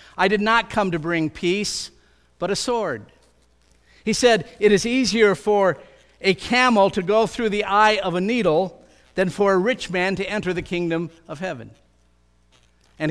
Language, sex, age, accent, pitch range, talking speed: English, male, 50-69, American, 140-190 Hz, 175 wpm